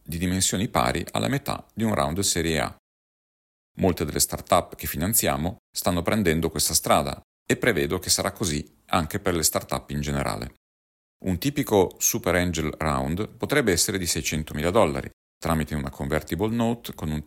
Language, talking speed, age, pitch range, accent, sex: Italian, 165 wpm, 40-59, 70-90 Hz, native, male